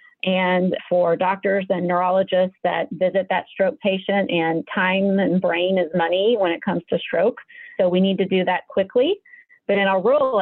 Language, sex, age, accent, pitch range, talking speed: English, female, 40-59, American, 175-215 Hz, 185 wpm